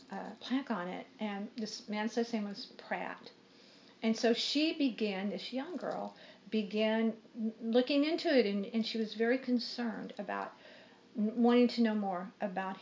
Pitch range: 205-240 Hz